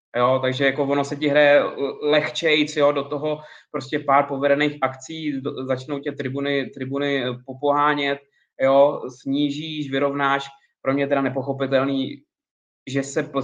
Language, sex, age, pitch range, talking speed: Czech, male, 20-39, 125-140 Hz, 135 wpm